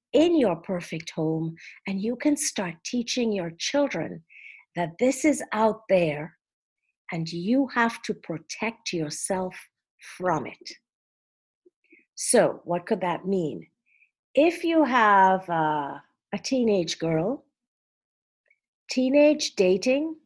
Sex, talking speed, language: female, 115 wpm, English